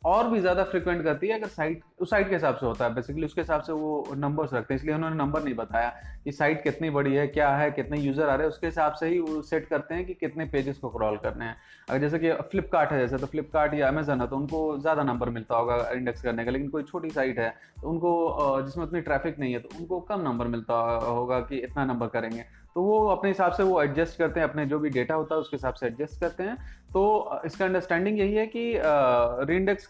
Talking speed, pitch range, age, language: 250 wpm, 135-185 Hz, 20-39, Hindi